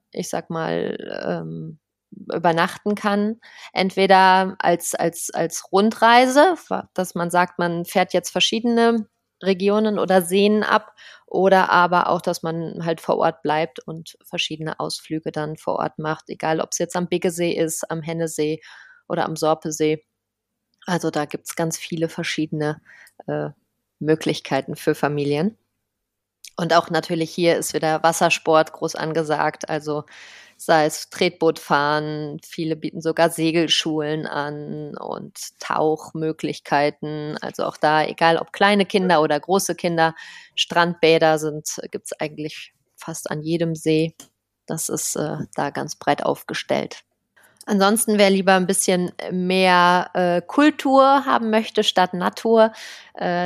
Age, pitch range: 20-39, 160-195 Hz